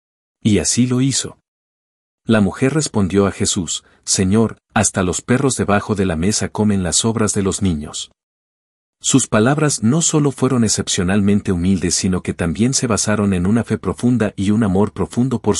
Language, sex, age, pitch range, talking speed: Spanish, male, 50-69, 90-115 Hz, 170 wpm